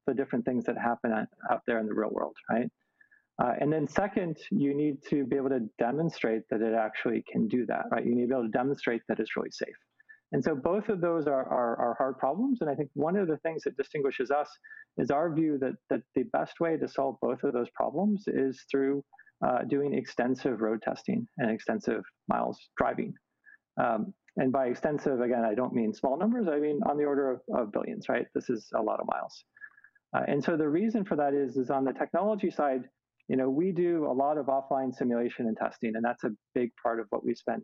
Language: English